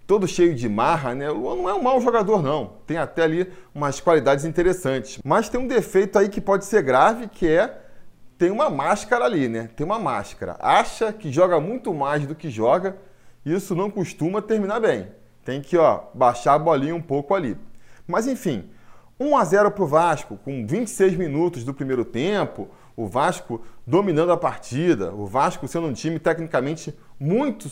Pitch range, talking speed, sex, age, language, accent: 140-195 Hz, 180 wpm, male, 20-39, Portuguese, Brazilian